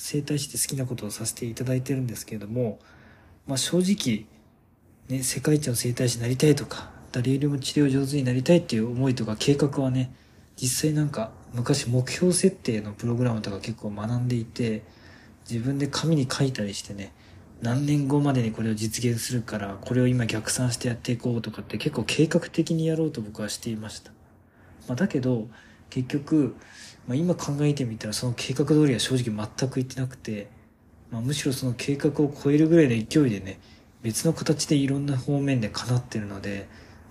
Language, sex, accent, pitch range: Japanese, male, native, 110-145 Hz